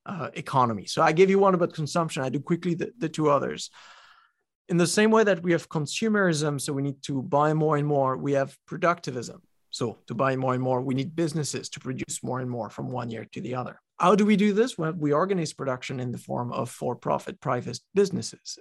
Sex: male